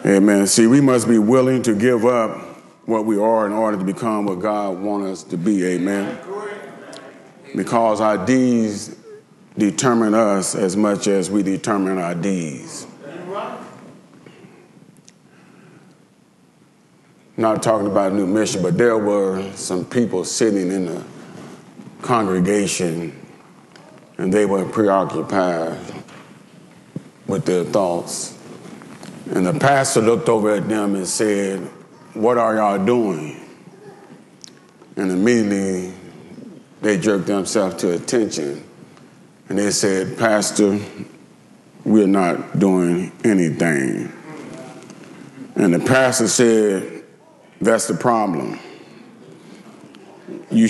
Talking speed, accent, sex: 110 wpm, American, male